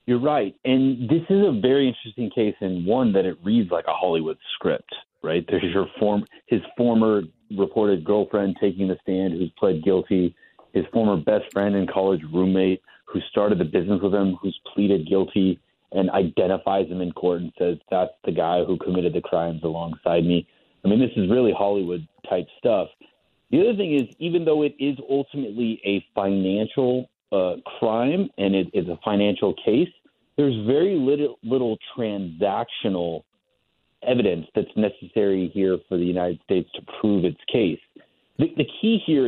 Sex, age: male, 30-49